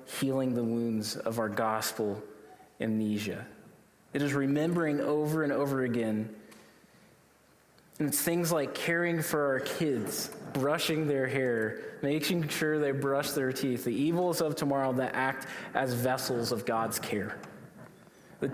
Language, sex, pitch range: English, male, 115-150 Hz